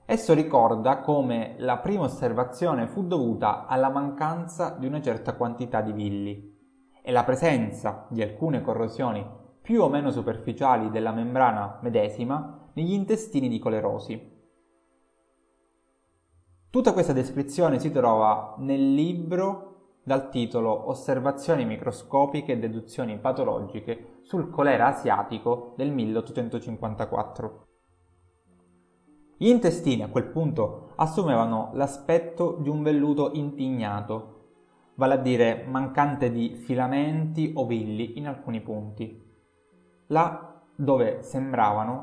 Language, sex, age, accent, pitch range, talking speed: Italian, male, 20-39, native, 110-150 Hz, 110 wpm